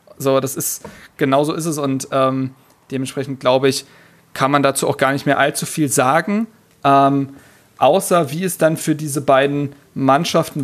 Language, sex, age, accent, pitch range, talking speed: German, male, 40-59, German, 135-160 Hz, 175 wpm